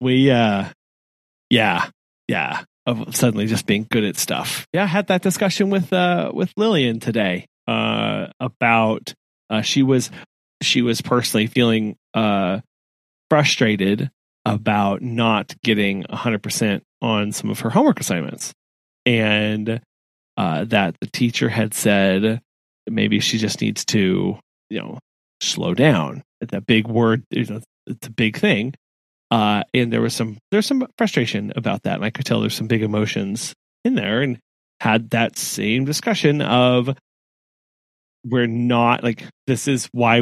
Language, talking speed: English, 150 wpm